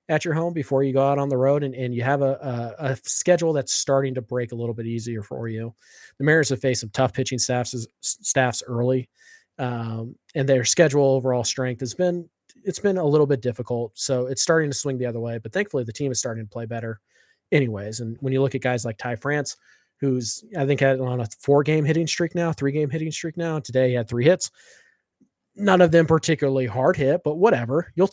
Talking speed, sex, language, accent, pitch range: 230 wpm, male, English, American, 120-140 Hz